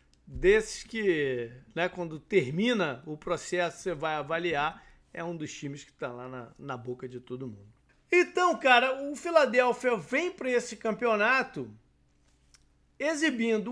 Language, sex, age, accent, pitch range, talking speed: Portuguese, male, 40-59, Brazilian, 150-235 Hz, 140 wpm